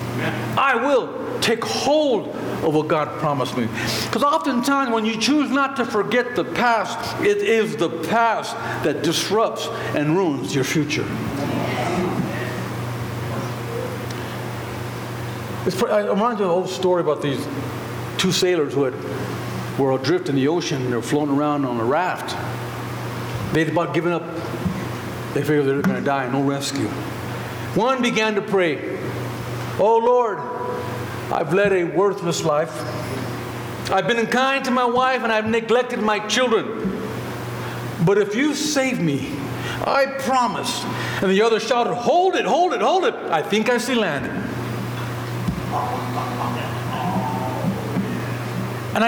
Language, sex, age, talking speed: English, male, 60-79, 140 wpm